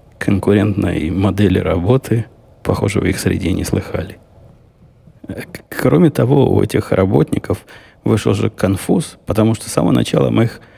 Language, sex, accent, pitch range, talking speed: Russian, male, native, 90-110 Hz, 135 wpm